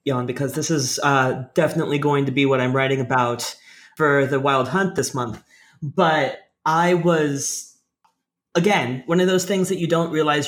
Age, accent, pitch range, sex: 30-49, American, 135-165 Hz, male